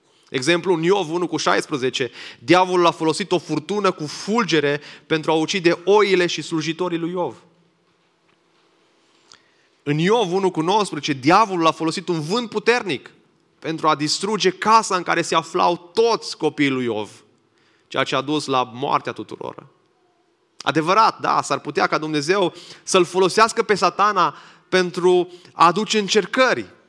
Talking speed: 145 wpm